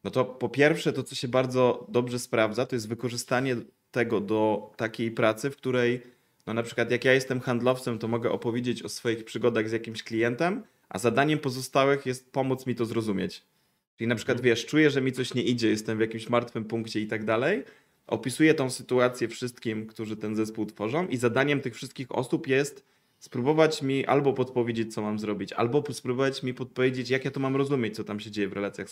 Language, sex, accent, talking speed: Polish, male, native, 200 wpm